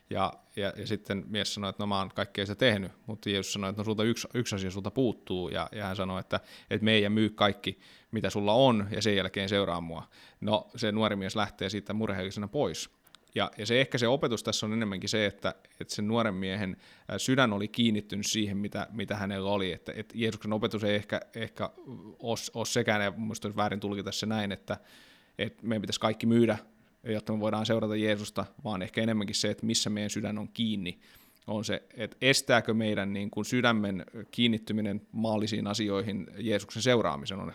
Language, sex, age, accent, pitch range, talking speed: Finnish, male, 20-39, native, 100-115 Hz, 190 wpm